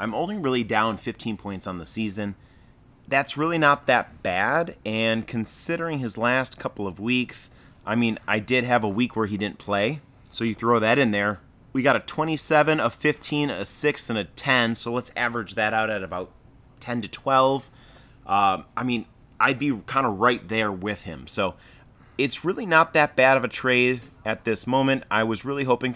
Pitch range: 105-130 Hz